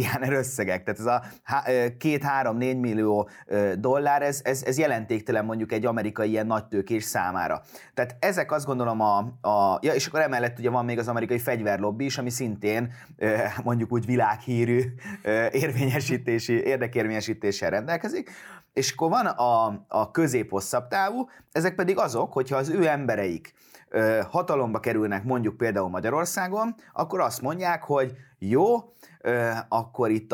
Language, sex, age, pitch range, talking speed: Hungarian, male, 30-49, 105-125 Hz, 135 wpm